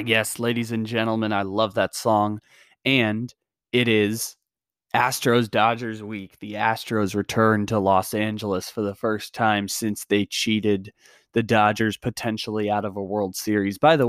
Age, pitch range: 20-39, 110-130 Hz